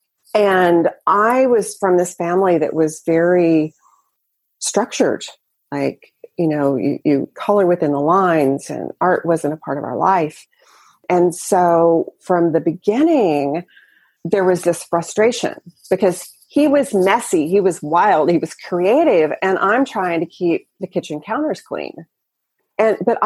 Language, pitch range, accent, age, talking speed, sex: English, 170-235 Hz, American, 40-59, 145 wpm, female